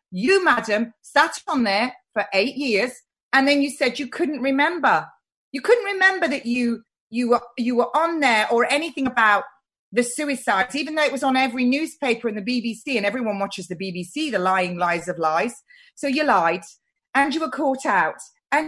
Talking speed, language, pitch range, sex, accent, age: 195 wpm, English, 240-315 Hz, female, British, 30-49